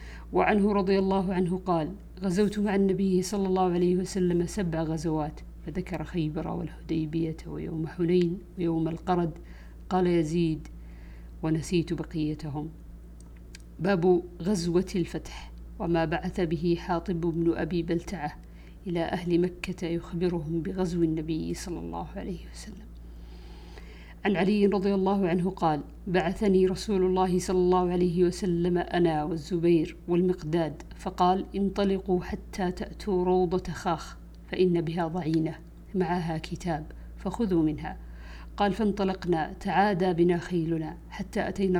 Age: 50-69